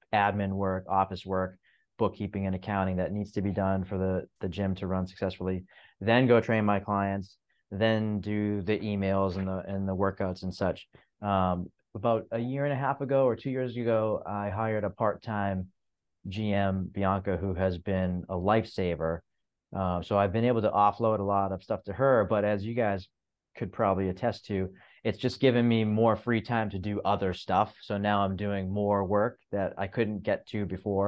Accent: American